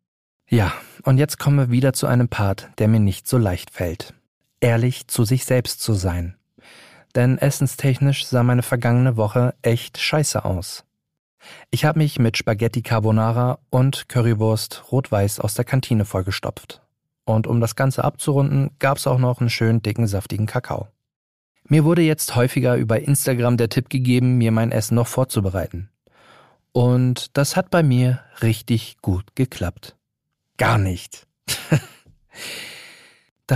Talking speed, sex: 145 wpm, male